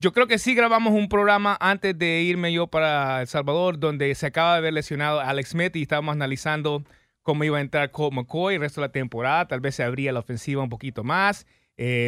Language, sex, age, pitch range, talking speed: English, male, 30-49, 145-185 Hz, 230 wpm